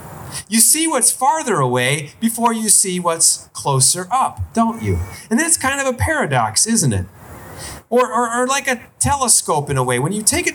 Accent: American